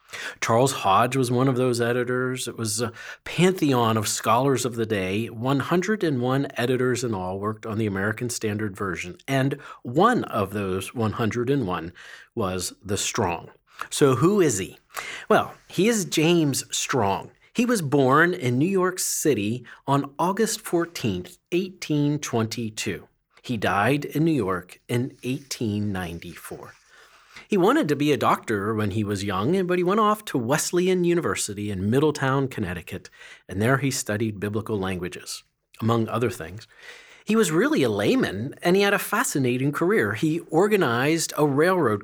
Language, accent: English, American